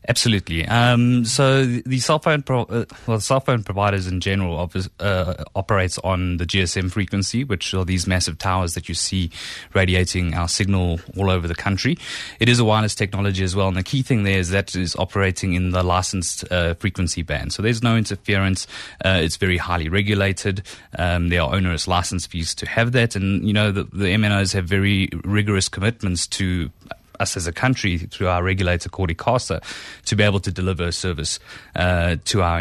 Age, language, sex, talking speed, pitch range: 20-39, English, male, 190 wpm, 90-105 Hz